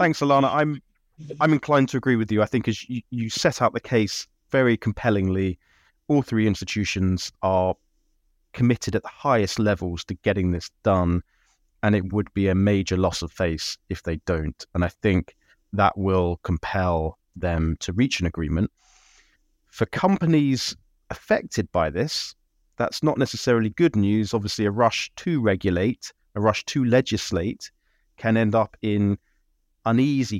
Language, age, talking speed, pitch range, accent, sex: English, 30-49, 160 wpm, 90-110 Hz, British, male